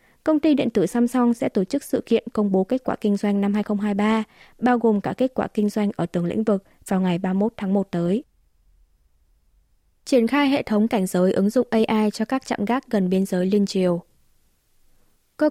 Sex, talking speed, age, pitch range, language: female, 210 wpm, 20-39, 195-235 Hz, Vietnamese